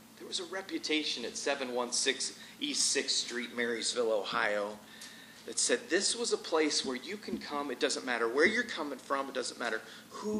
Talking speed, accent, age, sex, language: 185 wpm, American, 30-49, male, English